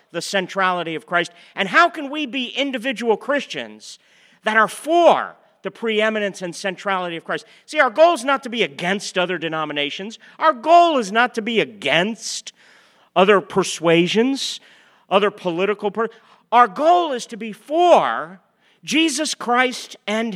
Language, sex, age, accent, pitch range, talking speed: English, male, 40-59, American, 170-230 Hz, 145 wpm